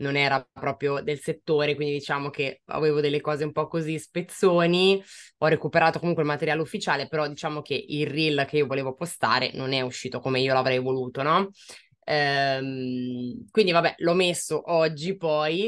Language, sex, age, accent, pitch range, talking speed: Italian, female, 20-39, native, 135-155 Hz, 170 wpm